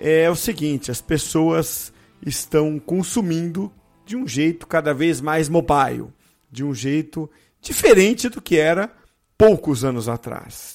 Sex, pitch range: male, 145-205 Hz